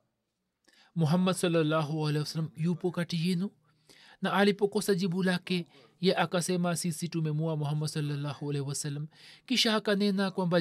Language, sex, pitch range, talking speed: Swahili, male, 160-190 Hz, 120 wpm